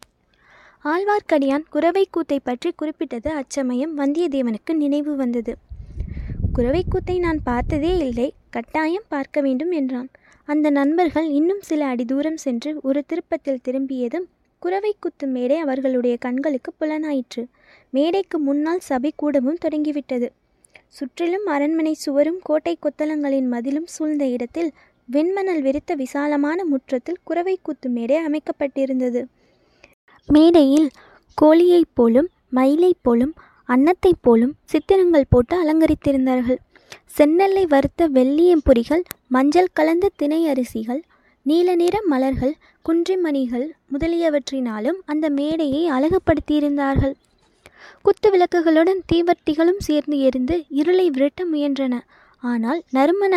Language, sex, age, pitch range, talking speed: Tamil, female, 20-39, 270-335 Hz, 95 wpm